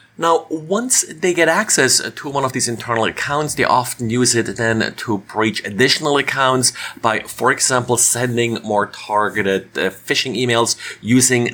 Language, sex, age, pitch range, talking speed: English, male, 30-49, 105-135 Hz, 150 wpm